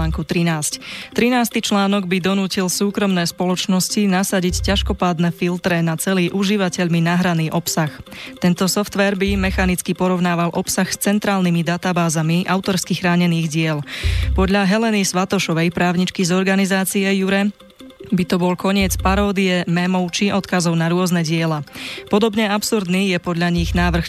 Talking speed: 125 wpm